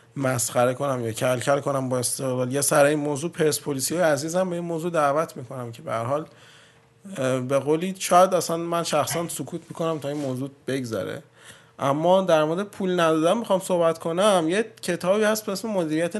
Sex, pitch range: male, 135-175 Hz